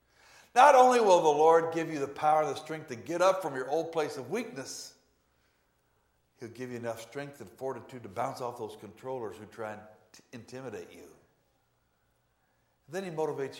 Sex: male